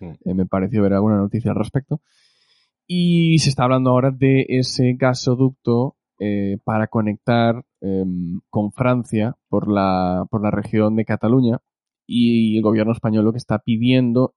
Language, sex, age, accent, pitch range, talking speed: Spanish, male, 20-39, Spanish, 100-125 Hz, 150 wpm